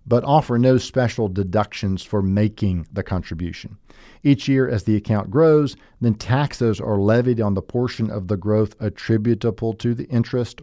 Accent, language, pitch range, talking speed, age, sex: American, English, 95-125 Hz, 165 wpm, 50-69, male